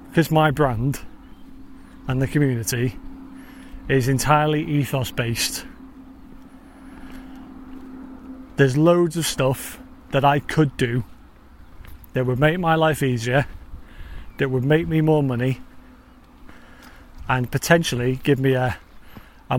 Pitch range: 90-150 Hz